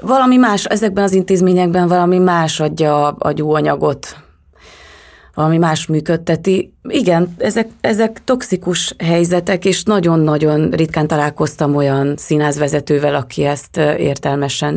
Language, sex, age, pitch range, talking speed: Hungarian, female, 30-49, 145-170 Hz, 110 wpm